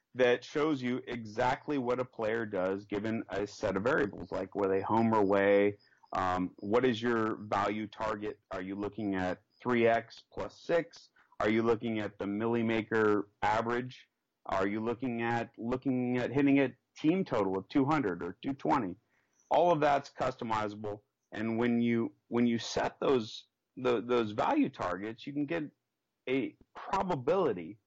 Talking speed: 155 wpm